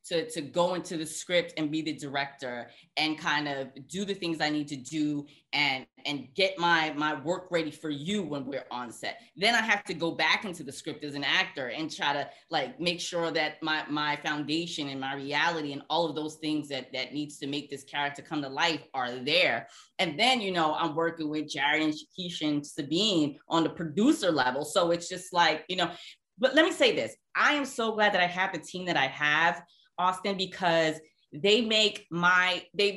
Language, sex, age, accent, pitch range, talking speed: English, female, 20-39, American, 150-195 Hz, 220 wpm